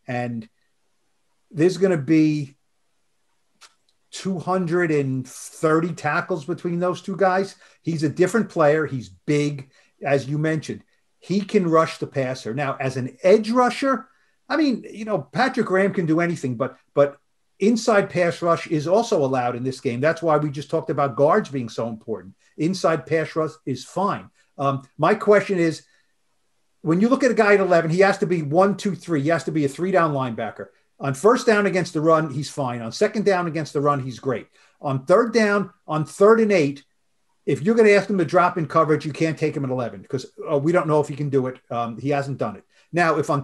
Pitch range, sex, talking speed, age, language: 140-185 Hz, male, 205 wpm, 50-69, English